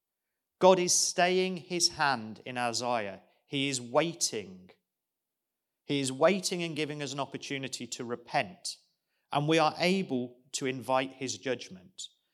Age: 40-59